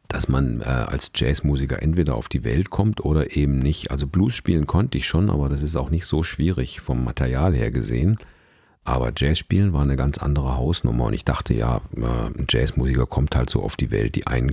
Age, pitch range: 50-69, 65-85 Hz